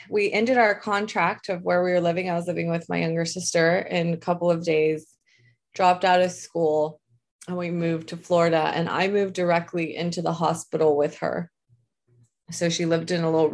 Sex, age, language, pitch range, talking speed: female, 20-39, English, 160-185 Hz, 200 wpm